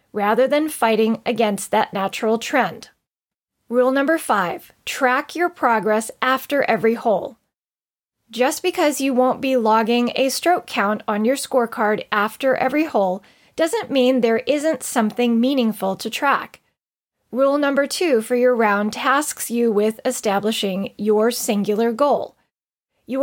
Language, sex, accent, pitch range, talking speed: English, female, American, 225-285 Hz, 135 wpm